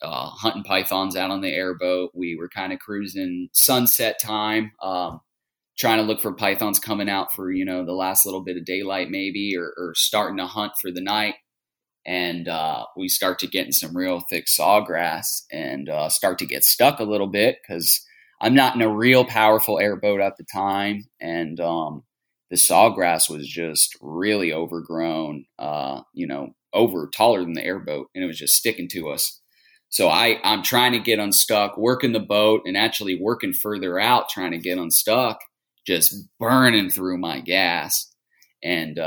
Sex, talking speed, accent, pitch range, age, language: male, 185 wpm, American, 90-110 Hz, 30-49, English